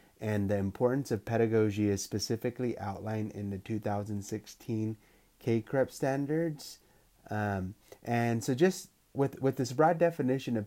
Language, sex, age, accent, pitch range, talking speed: English, male, 30-49, American, 105-120 Hz, 135 wpm